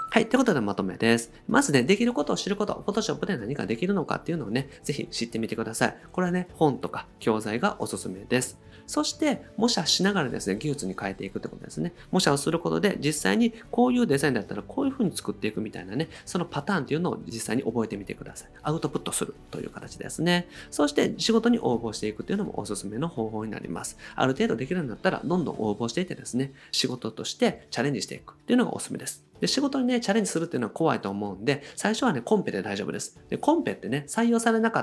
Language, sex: Japanese, male